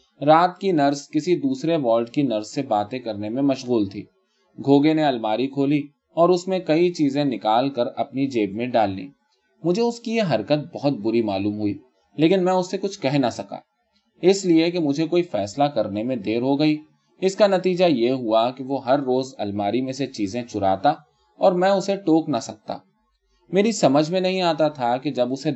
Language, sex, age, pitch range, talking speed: Urdu, male, 20-39, 110-160 Hz, 130 wpm